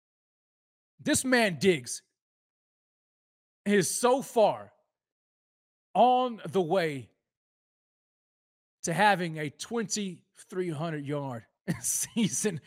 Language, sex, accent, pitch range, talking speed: English, male, American, 165-235 Hz, 65 wpm